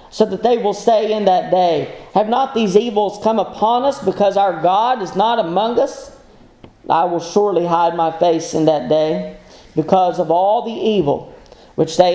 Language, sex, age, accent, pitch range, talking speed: English, male, 40-59, American, 170-205 Hz, 190 wpm